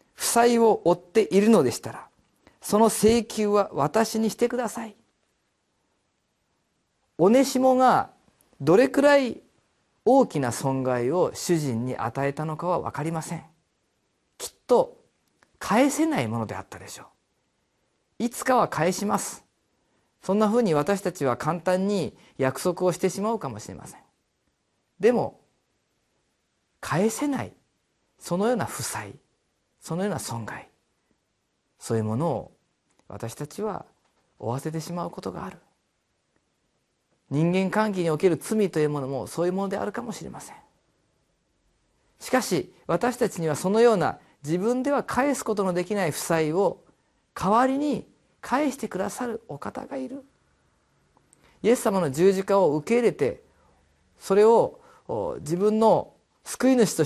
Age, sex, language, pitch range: 40-59, male, Japanese, 155-235 Hz